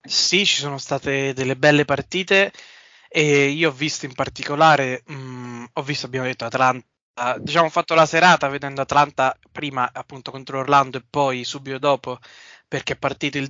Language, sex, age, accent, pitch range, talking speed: Italian, male, 20-39, native, 125-150 Hz, 165 wpm